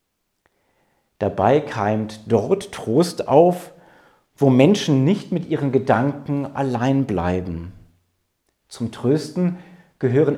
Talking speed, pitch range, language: 95 wpm, 110-175 Hz, German